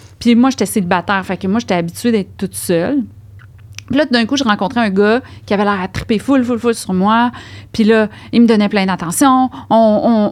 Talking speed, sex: 225 wpm, female